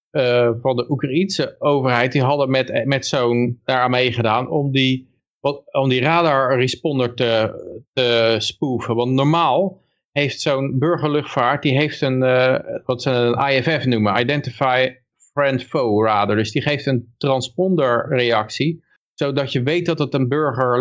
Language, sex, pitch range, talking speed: Dutch, male, 120-145 Hz, 145 wpm